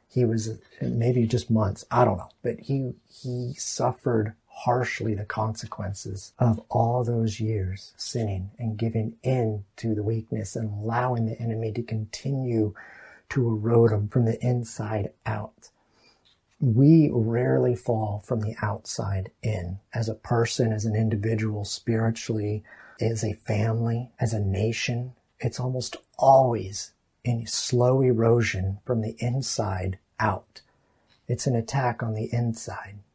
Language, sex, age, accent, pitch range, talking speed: English, male, 40-59, American, 110-125 Hz, 135 wpm